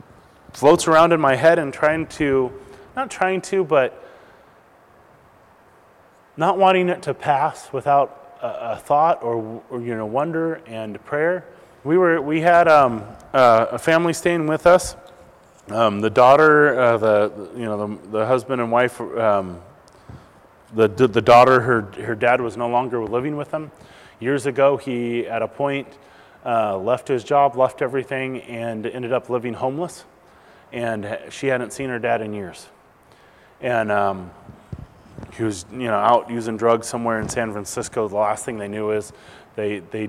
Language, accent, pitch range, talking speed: English, American, 110-145 Hz, 165 wpm